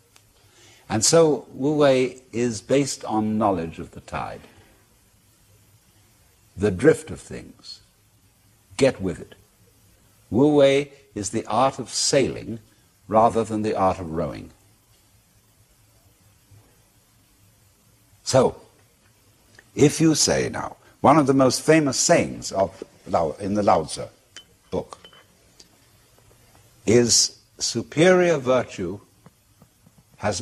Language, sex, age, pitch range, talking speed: English, male, 60-79, 100-125 Hz, 105 wpm